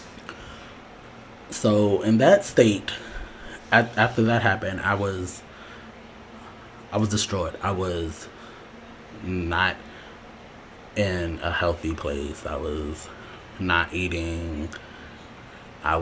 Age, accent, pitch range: 20-39, American, 85-110 Hz